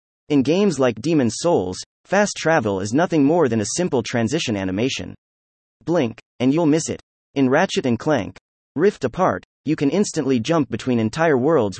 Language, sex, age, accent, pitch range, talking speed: English, male, 30-49, American, 105-155 Hz, 170 wpm